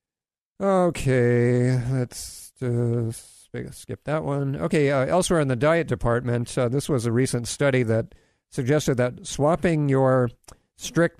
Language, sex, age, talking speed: English, male, 50-69, 135 wpm